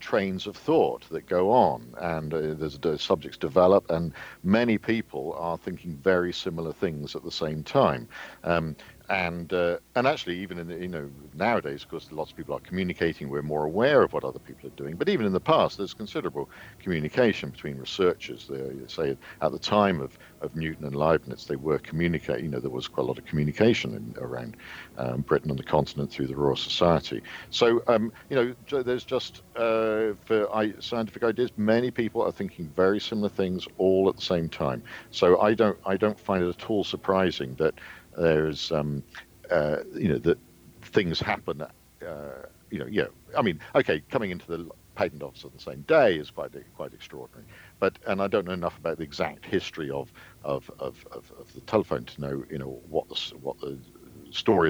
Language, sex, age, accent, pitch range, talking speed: English, male, 50-69, British, 75-105 Hz, 200 wpm